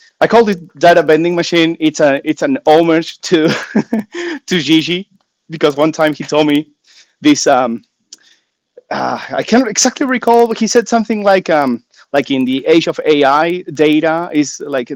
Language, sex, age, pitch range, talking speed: English, male, 30-49, 135-195 Hz, 170 wpm